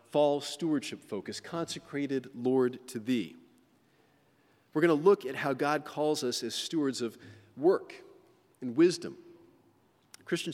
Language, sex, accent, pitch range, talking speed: English, male, American, 120-155 Hz, 130 wpm